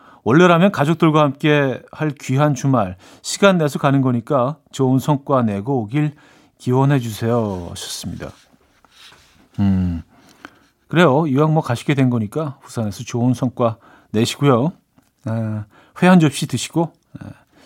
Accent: native